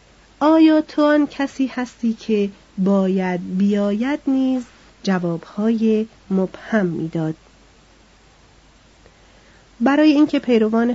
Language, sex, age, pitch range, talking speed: Persian, female, 40-59, 185-230 Hz, 80 wpm